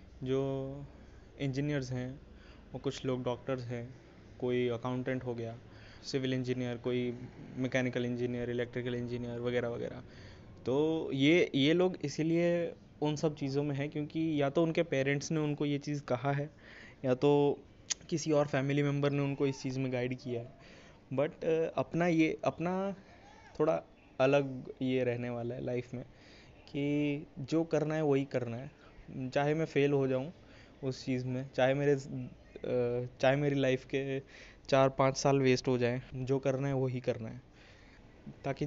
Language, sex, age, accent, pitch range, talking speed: Hindi, male, 20-39, native, 125-145 Hz, 160 wpm